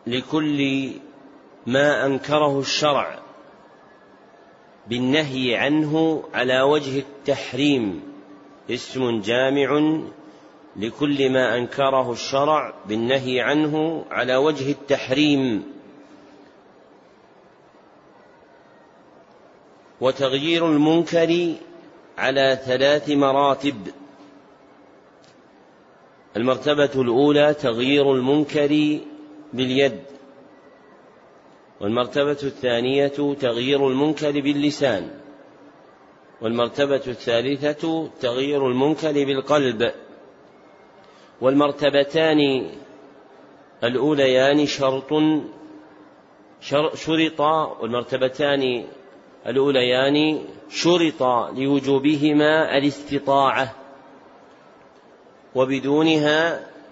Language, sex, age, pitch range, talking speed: Arabic, male, 40-59, 130-150 Hz, 55 wpm